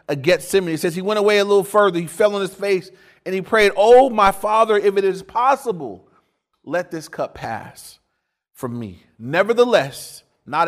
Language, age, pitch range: English, 30-49, 135-195 Hz